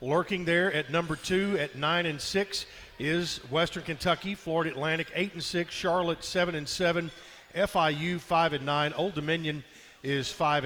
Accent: American